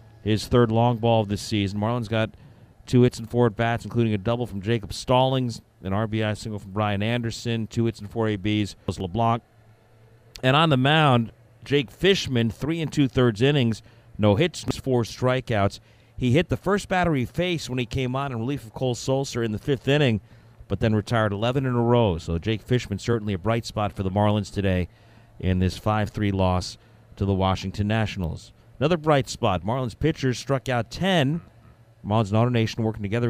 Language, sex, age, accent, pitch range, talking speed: English, male, 50-69, American, 105-125 Hz, 190 wpm